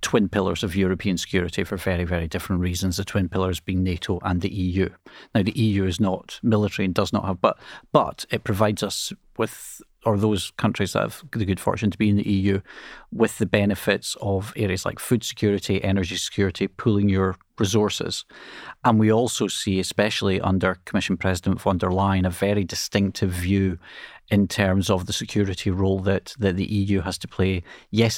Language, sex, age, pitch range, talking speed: Ukrainian, male, 40-59, 95-105 Hz, 190 wpm